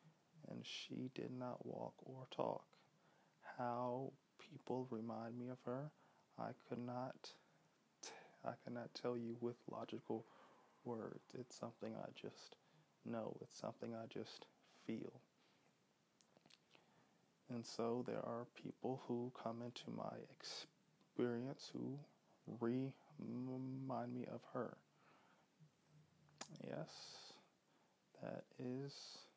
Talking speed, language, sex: 110 wpm, English, male